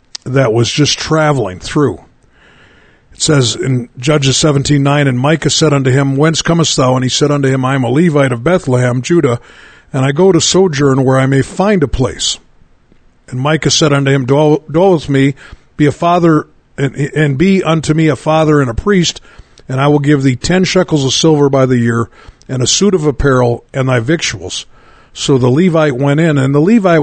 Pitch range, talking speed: 125-155 Hz, 205 wpm